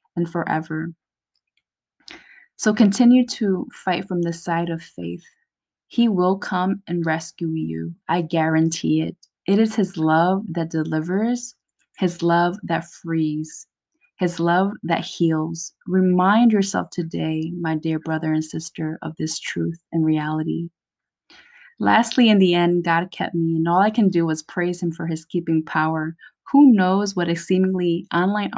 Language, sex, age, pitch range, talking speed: English, female, 20-39, 160-195 Hz, 150 wpm